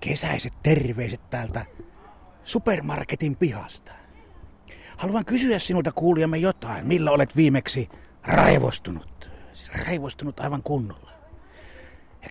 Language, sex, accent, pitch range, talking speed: Finnish, male, native, 100-160 Hz, 95 wpm